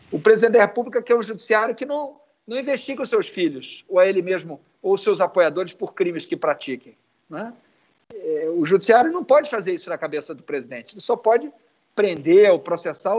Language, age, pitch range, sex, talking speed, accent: Portuguese, 50-69, 185-270 Hz, male, 200 wpm, Brazilian